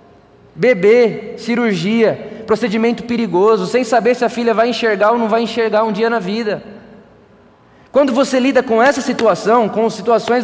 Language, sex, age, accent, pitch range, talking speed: Portuguese, male, 20-39, Brazilian, 225-270 Hz, 155 wpm